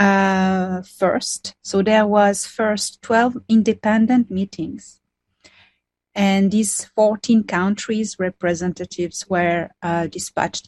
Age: 30-49